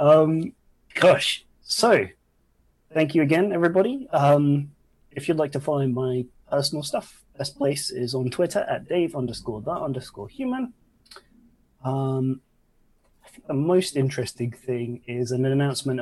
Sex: male